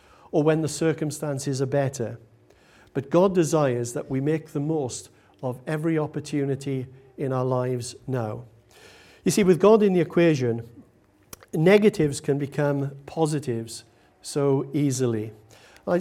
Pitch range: 135-170 Hz